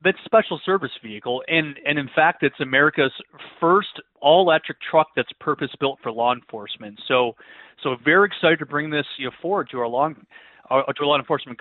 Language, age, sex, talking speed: English, 30-49, male, 185 wpm